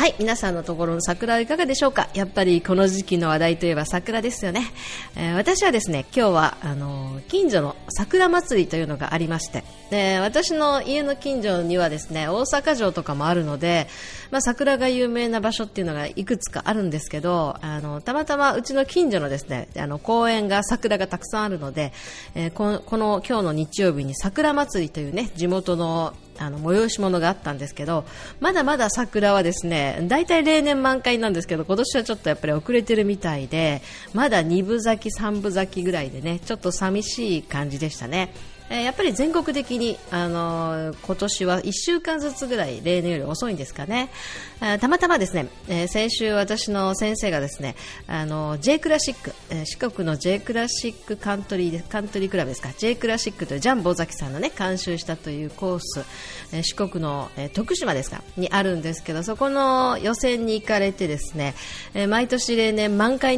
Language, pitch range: Japanese, 165-230 Hz